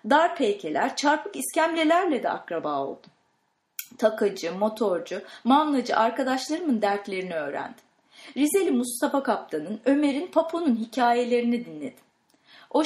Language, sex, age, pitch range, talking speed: English, female, 30-49, 230-310 Hz, 100 wpm